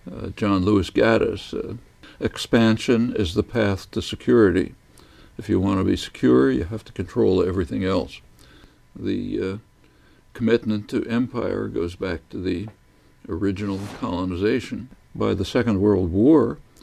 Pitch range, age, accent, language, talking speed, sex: 95-110 Hz, 60-79, American, English, 135 wpm, male